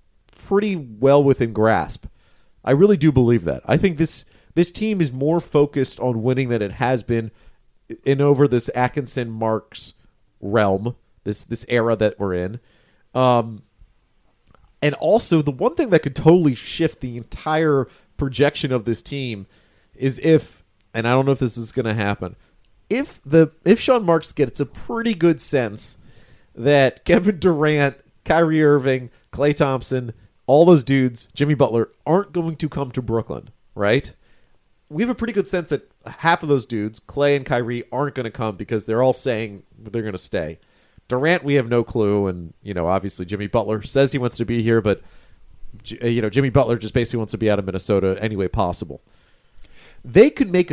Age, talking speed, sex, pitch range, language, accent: 40-59, 180 wpm, male, 110-150 Hz, English, American